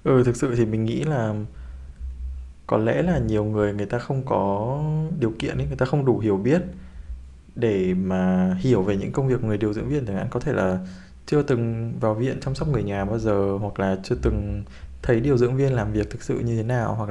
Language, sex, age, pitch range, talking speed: Vietnamese, male, 20-39, 95-125 Hz, 240 wpm